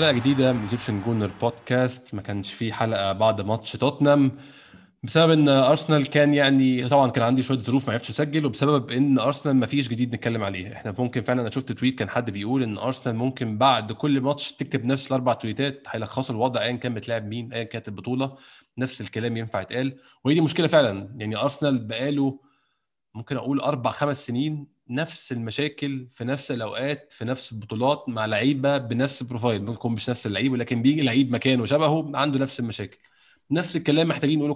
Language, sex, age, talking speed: Arabic, male, 20-39, 185 wpm